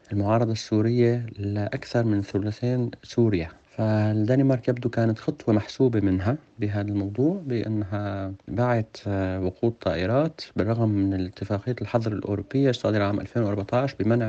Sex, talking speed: male, 115 wpm